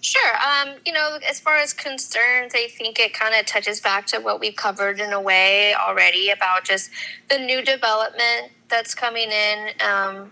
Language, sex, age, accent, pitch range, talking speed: English, female, 20-39, American, 190-230 Hz, 185 wpm